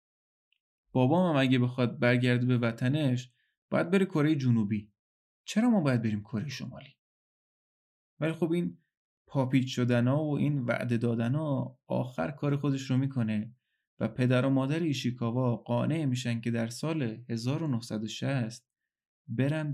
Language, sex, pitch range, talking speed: Persian, male, 120-150 Hz, 135 wpm